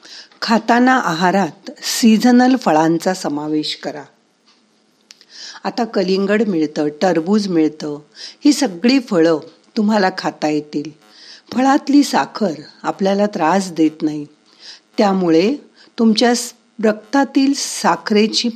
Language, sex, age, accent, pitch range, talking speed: Marathi, female, 50-69, native, 155-230 Hz, 85 wpm